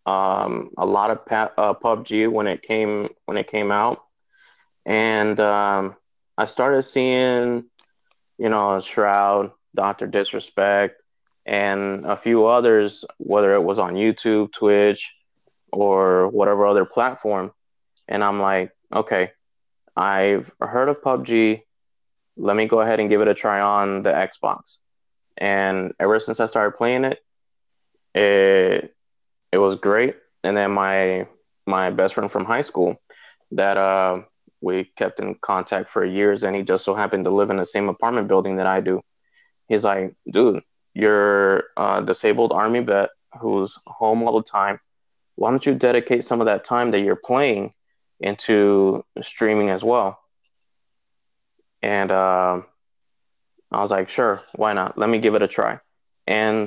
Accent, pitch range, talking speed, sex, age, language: American, 95-110 Hz, 150 wpm, male, 20-39, English